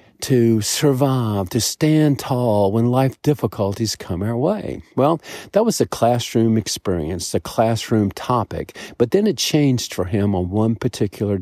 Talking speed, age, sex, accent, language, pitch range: 150 wpm, 50-69, male, American, English, 105-135 Hz